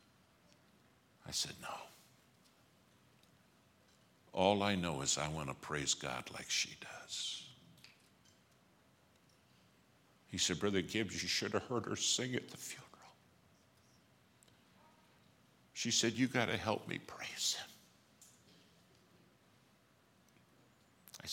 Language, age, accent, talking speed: English, 60-79, American, 105 wpm